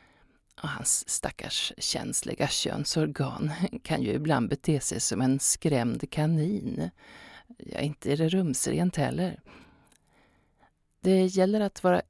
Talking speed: 120 wpm